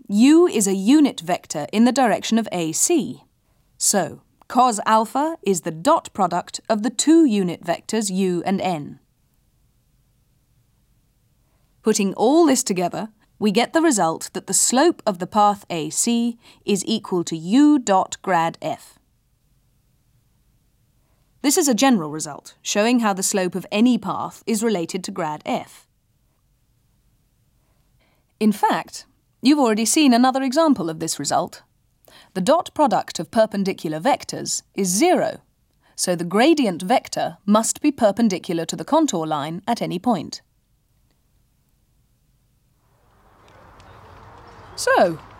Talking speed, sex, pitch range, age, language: 130 wpm, female, 155-235 Hz, 30-49, English